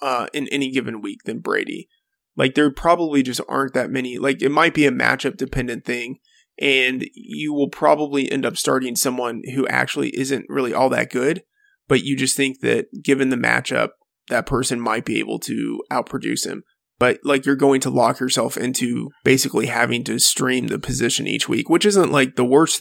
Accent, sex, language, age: American, male, English, 20-39